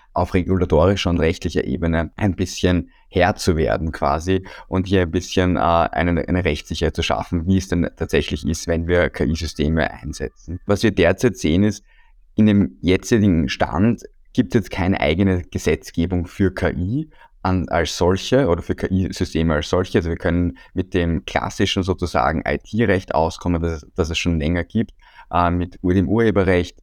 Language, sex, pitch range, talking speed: German, male, 85-95 Hz, 165 wpm